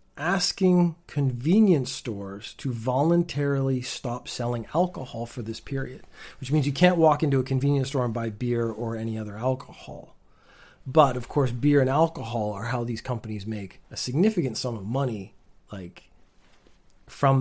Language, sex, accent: English, male, American